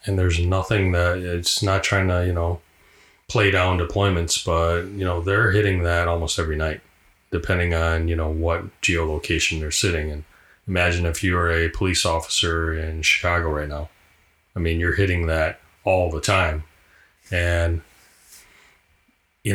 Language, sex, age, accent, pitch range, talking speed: English, male, 30-49, American, 85-95 Hz, 160 wpm